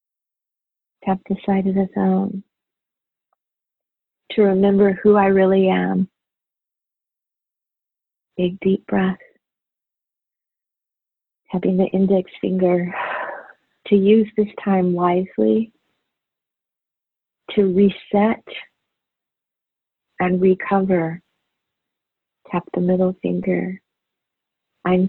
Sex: female